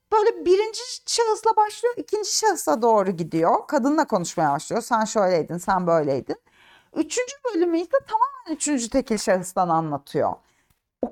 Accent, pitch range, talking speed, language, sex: native, 220-340 Hz, 130 wpm, Turkish, female